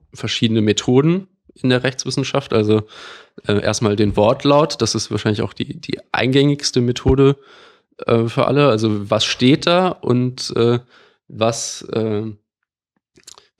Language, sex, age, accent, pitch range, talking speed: German, male, 20-39, German, 110-125 Hz, 130 wpm